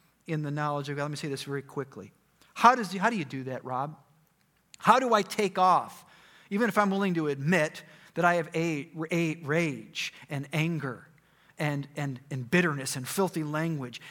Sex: male